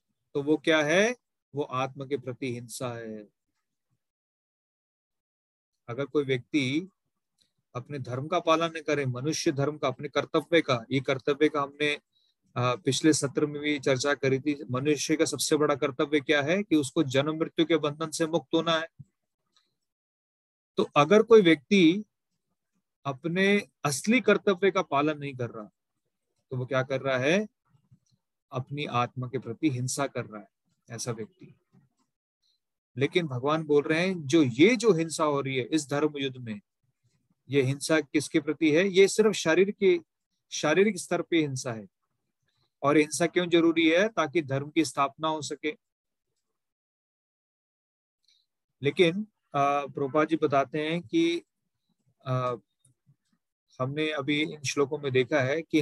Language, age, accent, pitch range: English, 40-59, Indian, 135-165 Hz